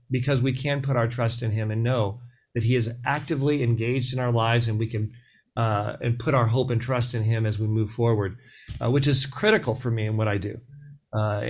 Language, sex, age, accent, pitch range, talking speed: English, male, 40-59, American, 115-130 Hz, 235 wpm